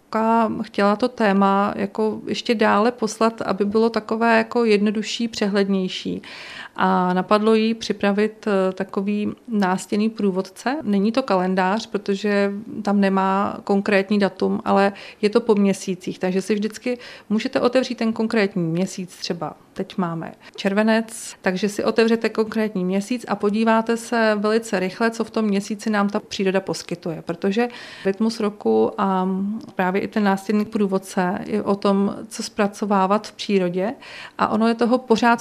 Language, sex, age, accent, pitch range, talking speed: Czech, female, 40-59, native, 195-220 Hz, 140 wpm